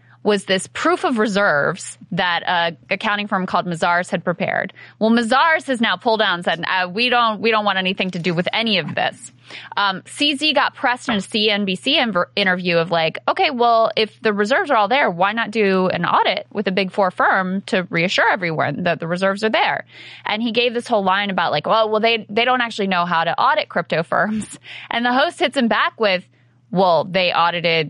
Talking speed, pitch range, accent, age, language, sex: 215 wpm, 170-225 Hz, American, 20-39, English, female